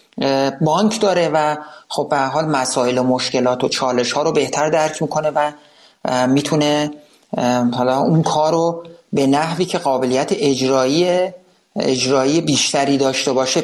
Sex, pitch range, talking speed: male, 130-160 Hz, 135 wpm